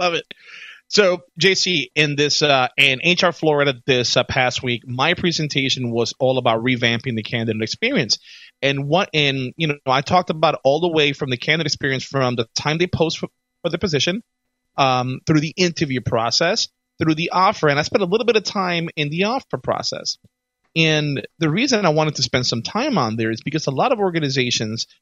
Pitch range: 130-180 Hz